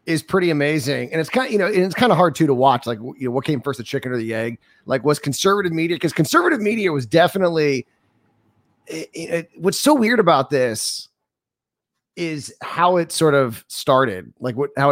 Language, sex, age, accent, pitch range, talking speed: English, male, 30-49, American, 120-160 Hz, 215 wpm